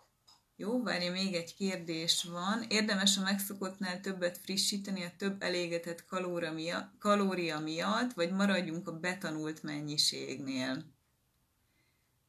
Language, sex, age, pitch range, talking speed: Hungarian, female, 30-49, 140-175 Hz, 105 wpm